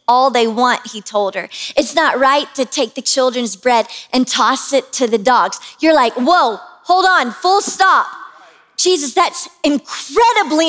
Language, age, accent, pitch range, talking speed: English, 20-39, American, 255-330 Hz, 170 wpm